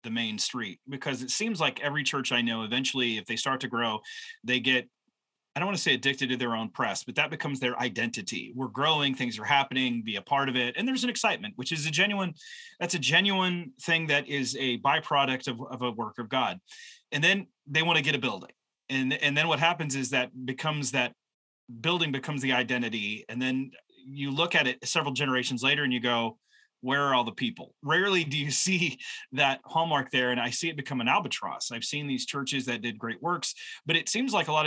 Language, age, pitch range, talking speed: English, 30-49, 125-165 Hz, 230 wpm